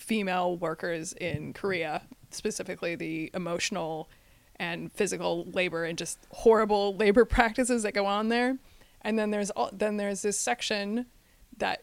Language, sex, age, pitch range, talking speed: English, female, 20-39, 180-215 Hz, 140 wpm